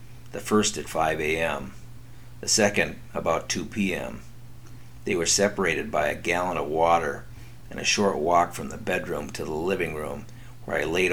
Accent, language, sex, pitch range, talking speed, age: American, English, male, 100-120 Hz, 175 wpm, 50-69